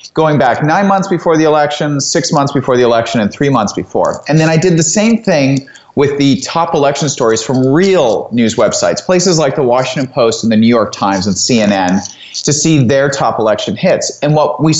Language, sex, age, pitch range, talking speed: English, male, 30-49, 125-165 Hz, 215 wpm